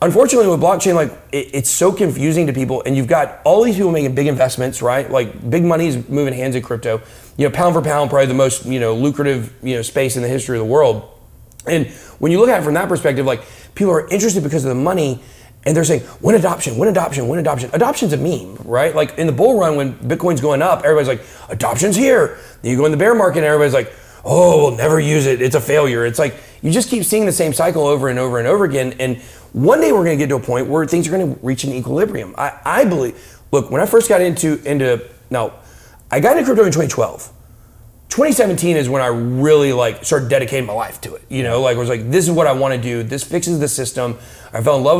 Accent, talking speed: American, 255 wpm